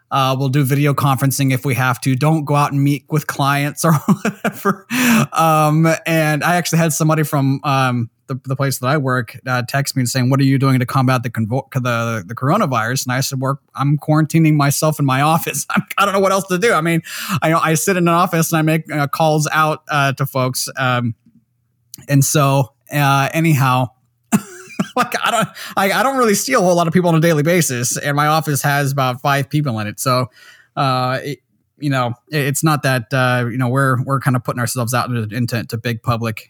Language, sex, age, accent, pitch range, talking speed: English, male, 20-39, American, 120-155 Hz, 225 wpm